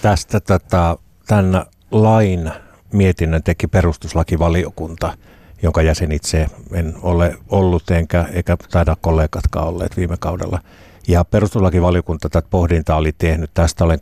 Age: 60-79